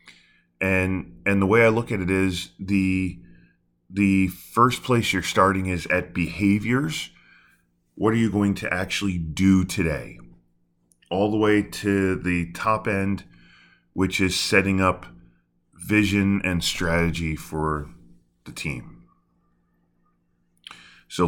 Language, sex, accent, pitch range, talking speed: English, male, American, 85-100 Hz, 125 wpm